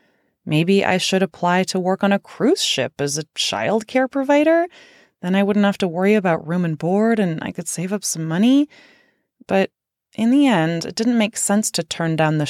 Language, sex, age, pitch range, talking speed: English, female, 20-39, 165-220 Hz, 210 wpm